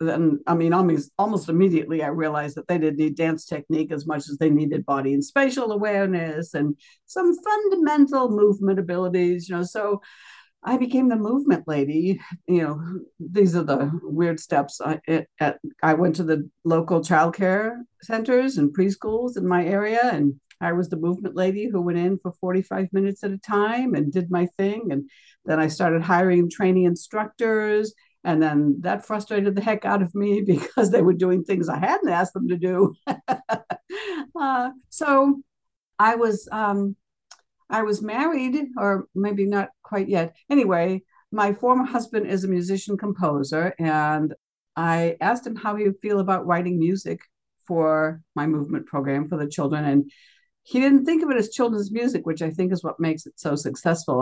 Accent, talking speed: American, 175 wpm